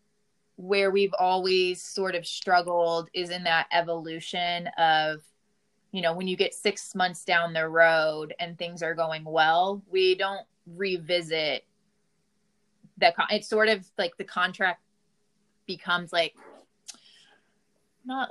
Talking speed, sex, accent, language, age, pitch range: 130 wpm, female, American, English, 20-39, 170-205 Hz